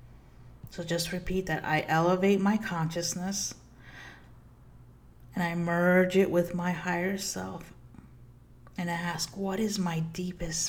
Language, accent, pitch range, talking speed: English, American, 150-180 Hz, 125 wpm